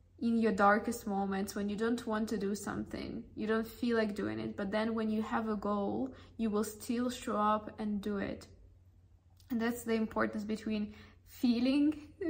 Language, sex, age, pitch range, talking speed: English, female, 20-39, 200-230 Hz, 185 wpm